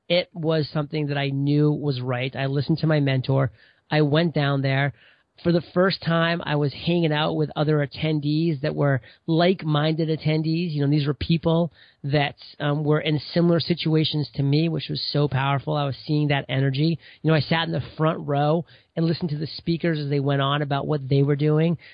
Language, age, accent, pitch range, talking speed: English, 30-49, American, 140-165 Hz, 210 wpm